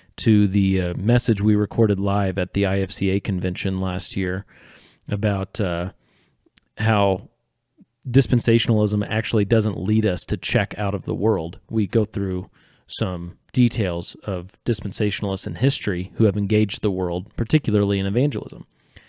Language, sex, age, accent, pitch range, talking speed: English, male, 30-49, American, 100-120 Hz, 140 wpm